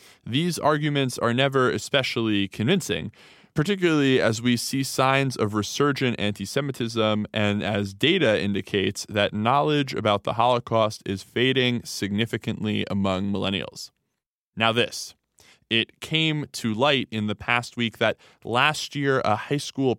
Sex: male